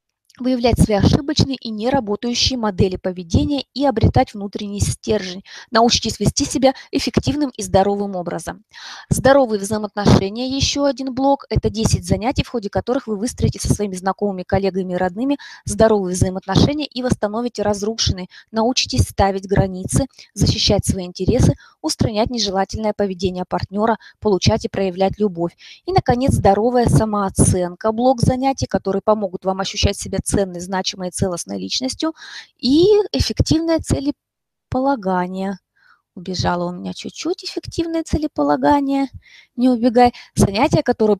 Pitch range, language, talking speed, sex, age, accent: 195-275 Hz, Russian, 125 wpm, female, 20-39, native